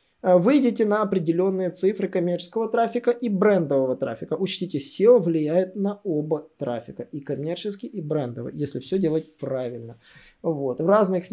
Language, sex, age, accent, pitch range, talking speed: Russian, male, 20-39, native, 145-200 Hz, 140 wpm